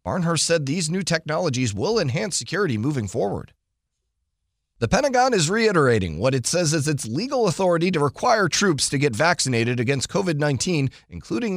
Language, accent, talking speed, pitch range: English, American, 155 wpm, 120-160 Hz